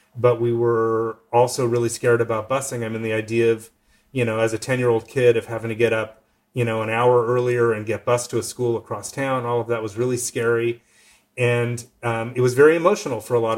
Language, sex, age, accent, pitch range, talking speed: English, male, 30-49, American, 115-140 Hz, 240 wpm